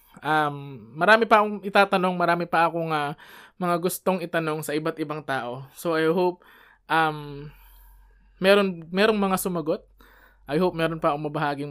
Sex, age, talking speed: male, 20-39, 150 wpm